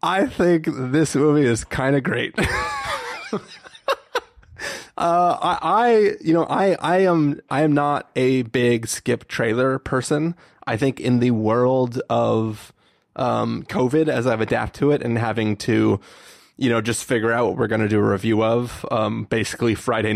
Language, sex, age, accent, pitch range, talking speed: English, male, 20-39, American, 110-140 Hz, 165 wpm